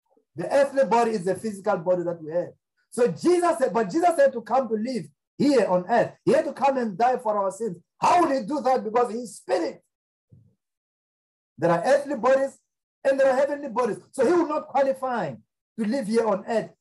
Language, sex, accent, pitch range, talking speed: English, male, South African, 195-270 Hz, 210 wpm